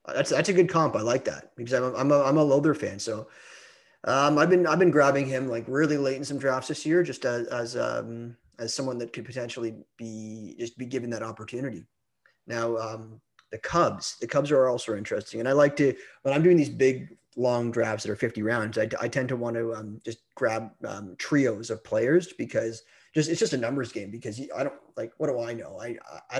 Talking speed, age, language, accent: 230 wpm, 30-49, English, American